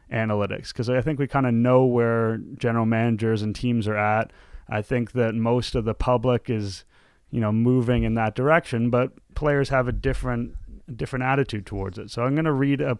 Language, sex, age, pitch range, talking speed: English, male, 30-49, 110-130 Hz, 205 wpm